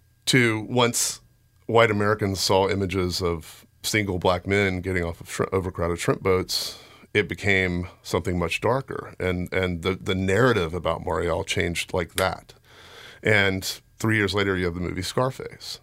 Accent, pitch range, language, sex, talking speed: American, 90-110 Hz, English, male, 155 wpm